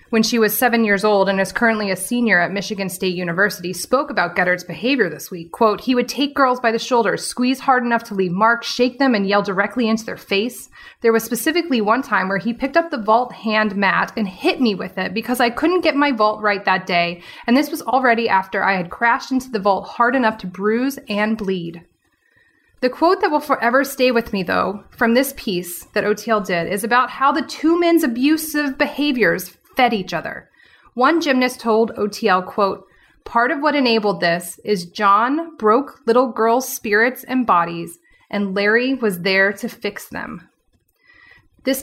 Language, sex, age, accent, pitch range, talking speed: English, female, 20-39, American, 205-260 Hz, 200 wpm